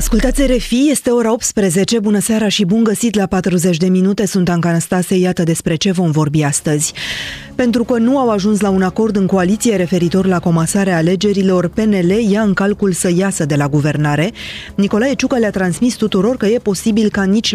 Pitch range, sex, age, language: 160-200 Hz, female, 20-39, Romanian